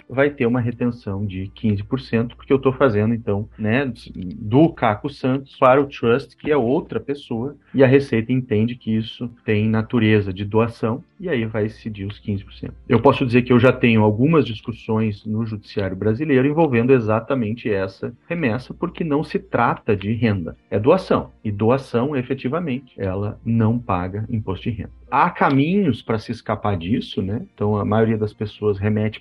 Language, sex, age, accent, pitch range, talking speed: Portuguese, male, 40-59, Brazilian, 105-130 Hz, 175 wpm